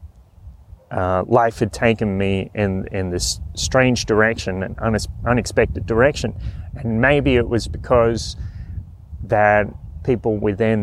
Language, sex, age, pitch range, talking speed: English, male, 30-49, 95-120 Hz, 115 wpm